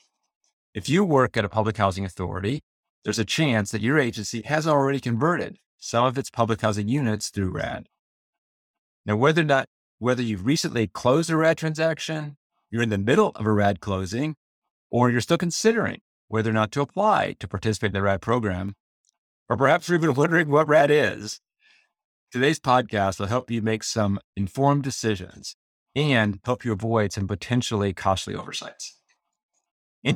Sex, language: male, English